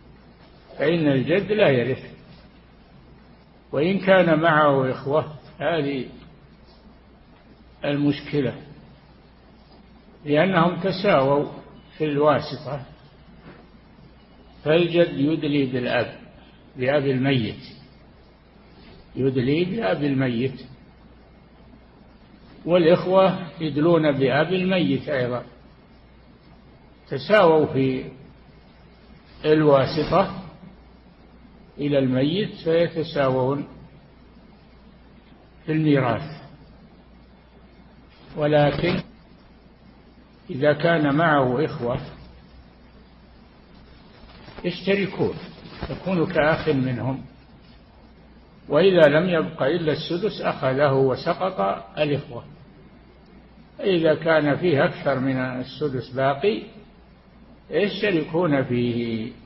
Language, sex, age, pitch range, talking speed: Arabic, male, 60-79, 135-170 Hz, 60 wpm